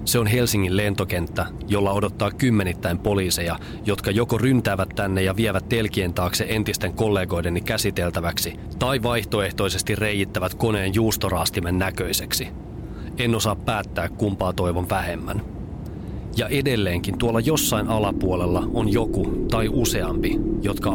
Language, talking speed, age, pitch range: Finnish, 115 wpm, 30-49, 75-105 Hz